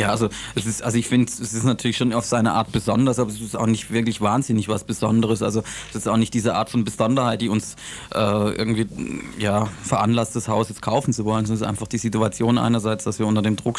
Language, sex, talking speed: German, male, 230 wpm